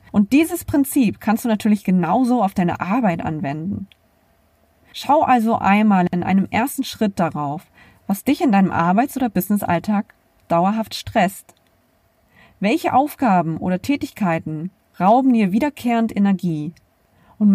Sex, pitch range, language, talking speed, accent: female, 180-235 Hz, German, 125 wpm, German